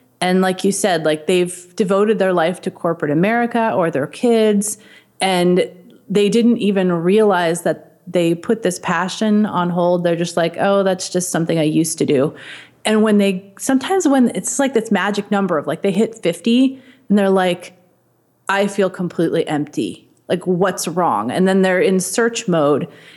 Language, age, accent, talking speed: English, 30-49, American, 180 wpm